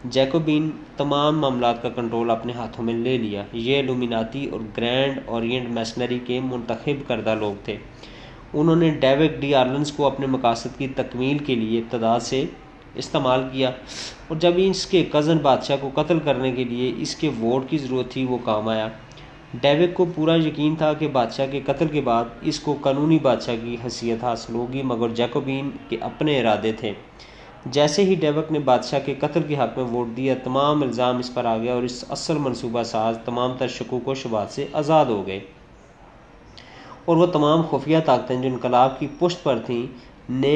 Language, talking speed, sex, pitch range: Urdu, 185 wpm, male, 120-150 Hz